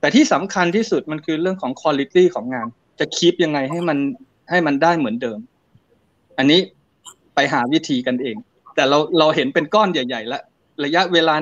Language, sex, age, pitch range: Thai, male, 20-39, 145-180 Hz